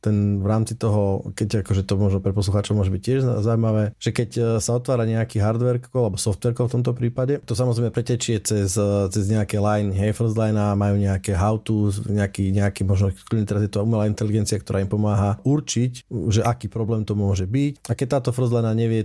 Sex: male